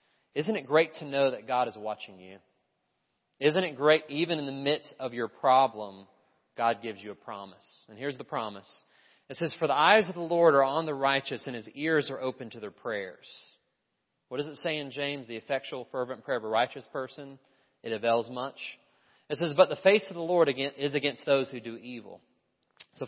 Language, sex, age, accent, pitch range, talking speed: English, male, 30-49, American, 115-145 Hz, 210 wpm